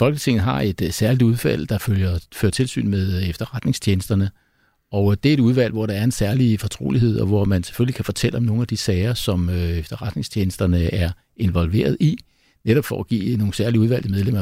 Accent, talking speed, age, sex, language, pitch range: native, 190 wpm, 60-79, male, Danish, 95-120 Hz